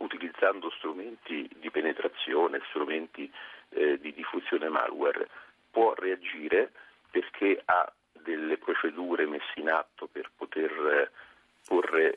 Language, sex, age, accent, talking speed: Italian, male, 50-69, native, 110 wpm